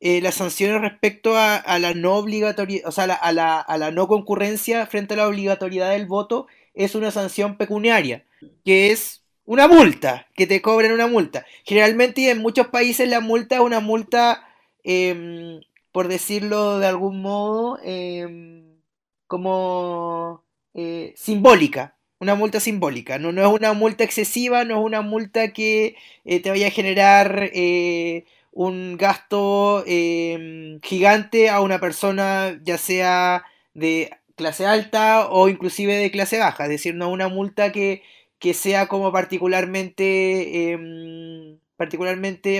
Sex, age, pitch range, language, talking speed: male, 20-39, 180-215 Hz, Spanish, 150 wpm